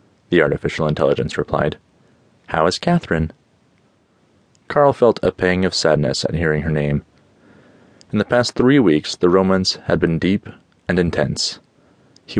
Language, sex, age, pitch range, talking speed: English, male, 30-49, 80-105 Hz, 145 wpm